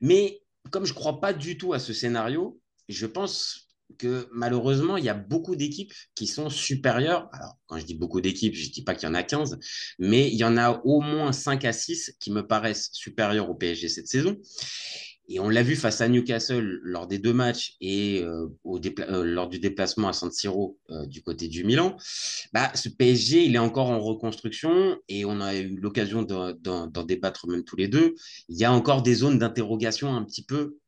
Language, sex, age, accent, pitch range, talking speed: French, male, 30-49, French, 100-135 Hz, 220 wpm